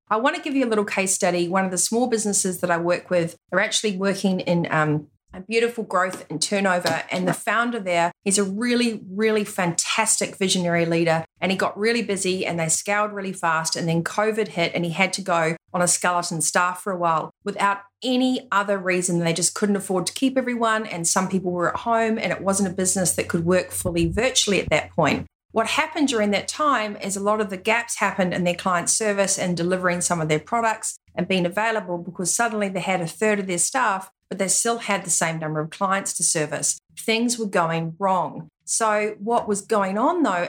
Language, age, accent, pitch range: English, 30-49, Australian, 175-215 Hz